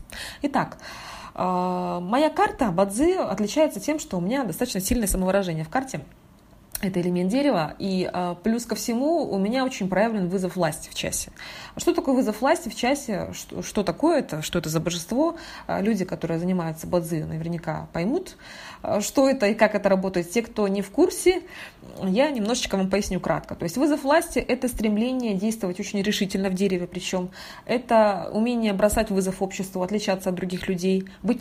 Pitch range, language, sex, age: 185-230 Hz, Russian, female, 20-39